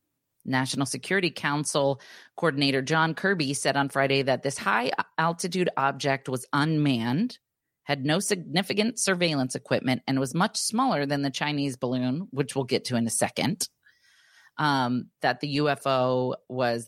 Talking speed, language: 140 wpm, English